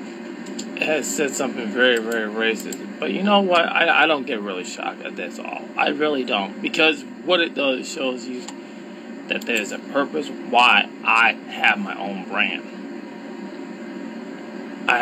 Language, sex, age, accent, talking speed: English, male, 20-39, American, 160 wpm